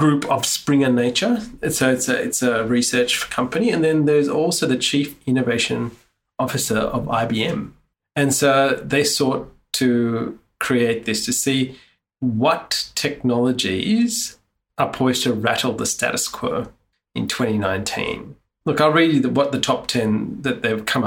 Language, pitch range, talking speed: English, 120-145 Hz, 150 wpm